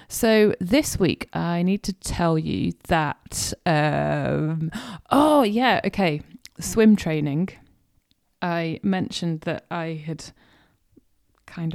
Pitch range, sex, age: 155-195 Hz, female, 30-49